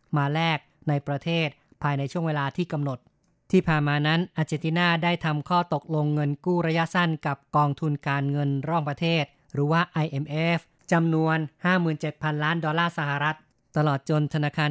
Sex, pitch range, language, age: female, 145-165 Hz, Thai, 20-39